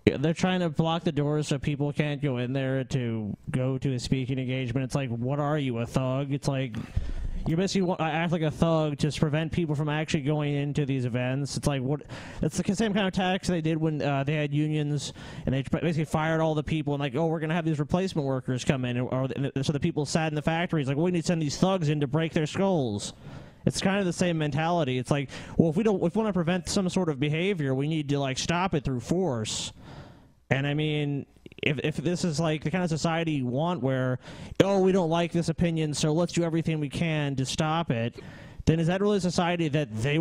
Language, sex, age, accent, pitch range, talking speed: English, male, 20-39, American, 145-180 Hz, 250 wpm